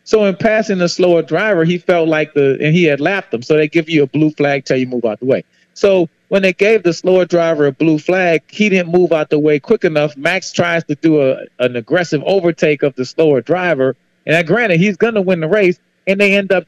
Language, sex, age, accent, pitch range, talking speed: English, male, 40-59, American, 145-200 Hz, 250 wpm